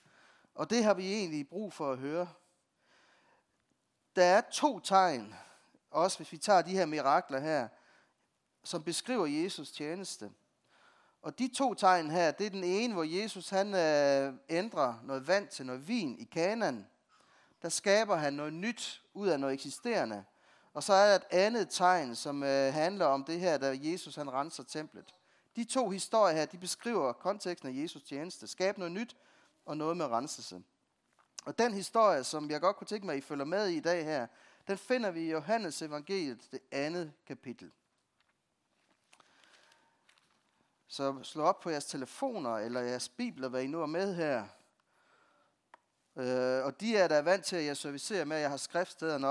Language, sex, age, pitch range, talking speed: Danish, male, 30-49, 140-195 Hz, 175 wpm